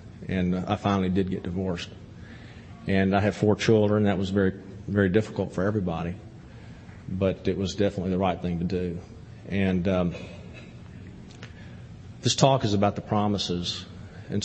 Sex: male